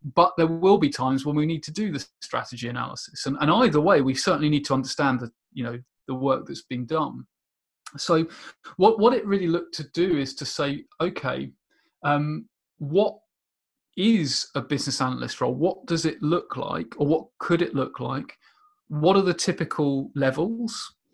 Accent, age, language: British, 30-49, English